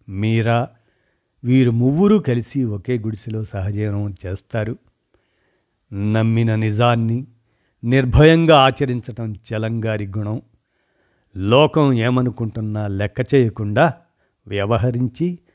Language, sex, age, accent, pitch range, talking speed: Telugu, male, 50-69, native, 105-135 Hz, 75 wpm